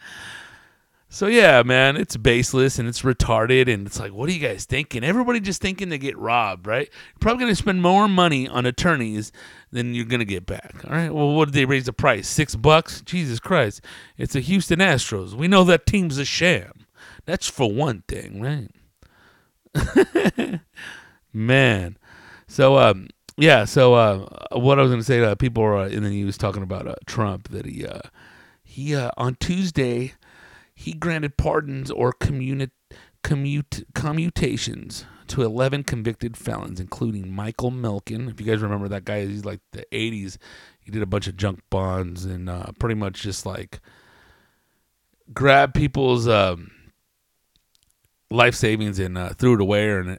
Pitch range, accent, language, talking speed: 105-140 Hz, American, English, 175 wpm